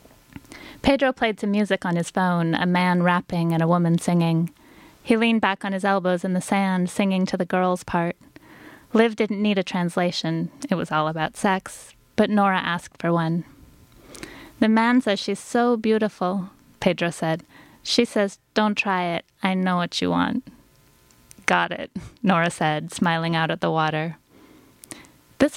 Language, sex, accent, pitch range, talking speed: English, female, American, 175-215 Hz, 165 wpm